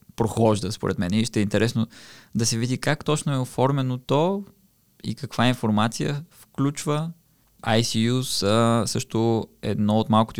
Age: 20-39